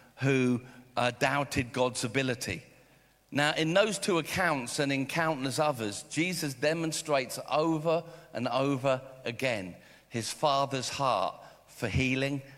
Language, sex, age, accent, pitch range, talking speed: English, male, 50-69, British, 125-155 Hz, 120 wpm